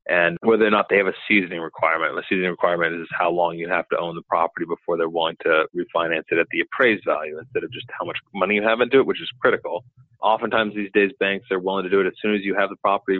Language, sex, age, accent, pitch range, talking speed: English, male, 30-49, American, 100-160 Hz, 275 wpm